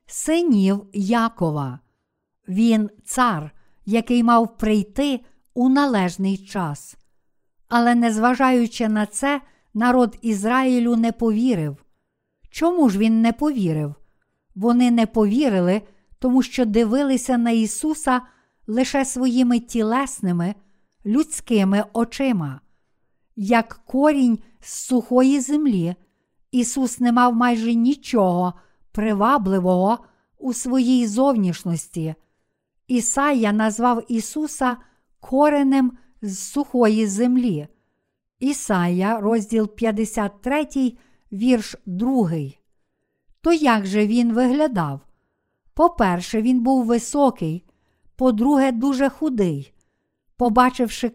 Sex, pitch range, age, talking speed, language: female, 210-255 Hz, 50-69, 90 wpm, Ukrainian